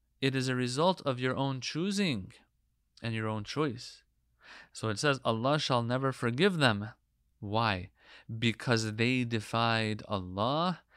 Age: 30-49